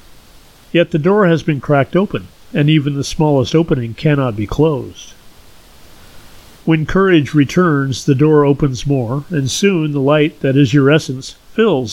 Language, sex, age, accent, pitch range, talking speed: English, male, 50-69, American, 135-160 Hz, 155 wpm